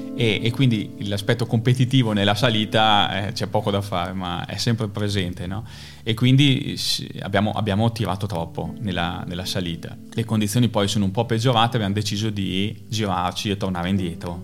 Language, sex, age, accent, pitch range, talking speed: Italian, male, 20-39, native, 95-115 Hz, 160 wpm